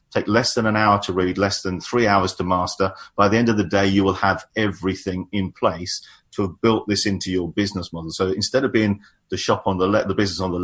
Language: English